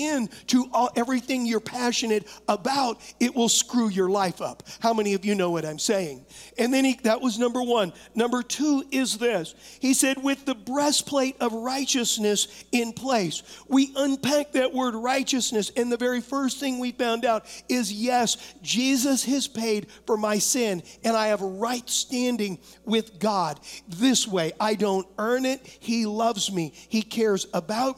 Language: English